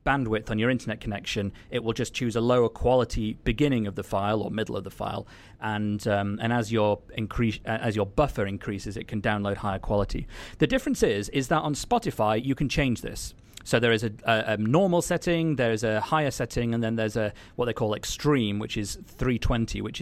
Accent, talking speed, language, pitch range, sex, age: British, 215 wpm, English, 105-120 Hz, male, 30-49